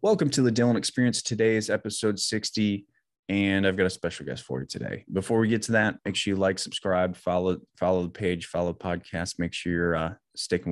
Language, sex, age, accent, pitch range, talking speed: English, male, 20-39, American, 90-105 Hz, 225 wpm